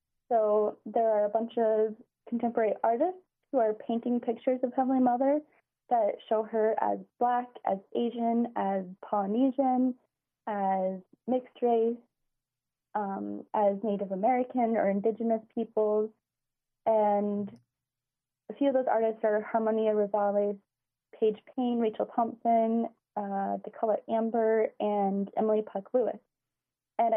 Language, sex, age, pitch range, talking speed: English, female, 30-49, 210-245 Hz, 125 wpm